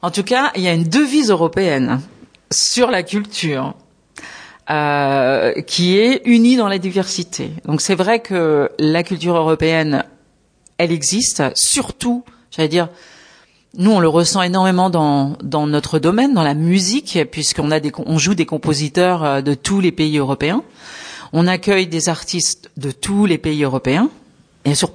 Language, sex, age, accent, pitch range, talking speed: French, female, 50-69, French, 150-195 Hz, 160 wpm